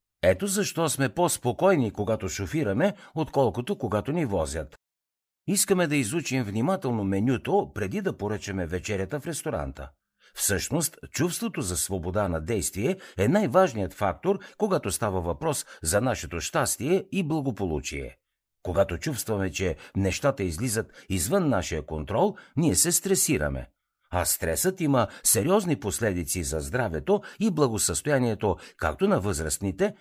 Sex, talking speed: male, 120 wpm